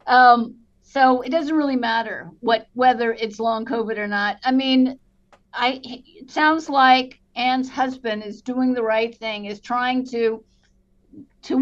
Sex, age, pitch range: female, 50-69, 225-260 Hz